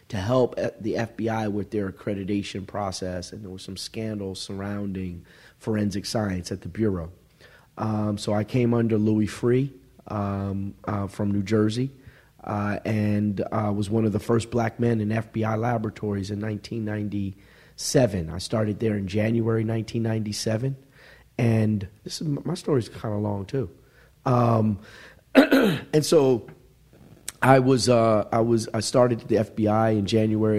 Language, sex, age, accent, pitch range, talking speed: English, male, 40-59, American, 100-115 Hz, 150 wpm